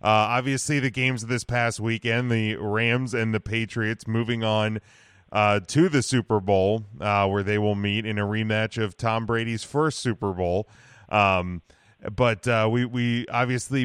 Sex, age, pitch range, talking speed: male, 30-49, 105-125 Hz, 175 wpm